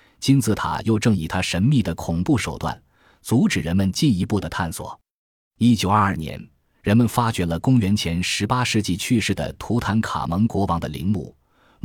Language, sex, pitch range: Chinese, male, 85-120 Hz